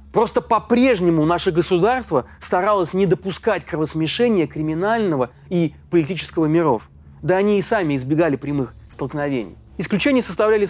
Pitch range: 150-200 Hz